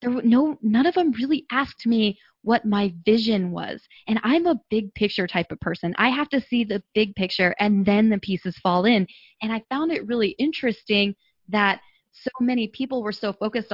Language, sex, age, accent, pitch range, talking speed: English, female, 20-39, American, 195-245 Hz, 210 wpm